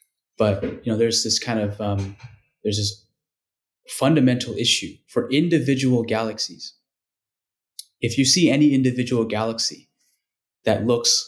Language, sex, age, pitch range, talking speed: English, male, 20-39, 105-130 Hz, 120 wpm